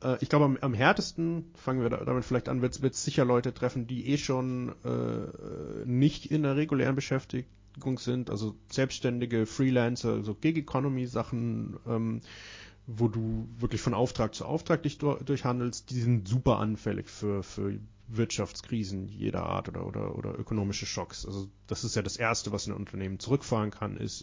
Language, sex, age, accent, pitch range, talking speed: German, male, 30-49, German, 105-130 Hz, 165 wpm